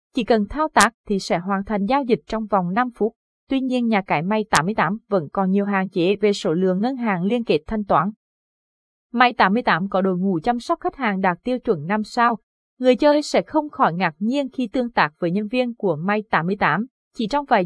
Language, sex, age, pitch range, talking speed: Vietnamese, female, 20-39, 195-245 Hz, 230 wpm